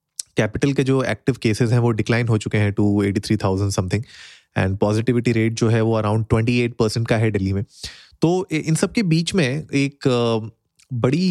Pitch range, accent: 105-130 Hz, native